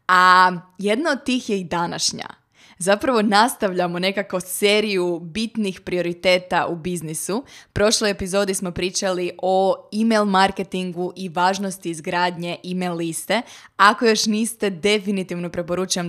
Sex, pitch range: female, 175-205 Hz